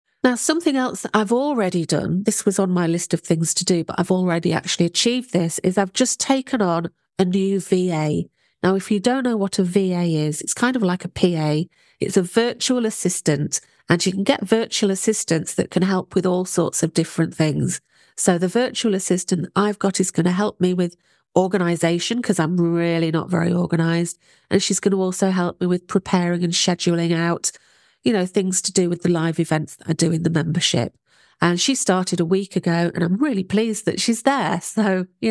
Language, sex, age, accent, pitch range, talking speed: English, female, 40-59, British, 175-220 Hz, 210 wpm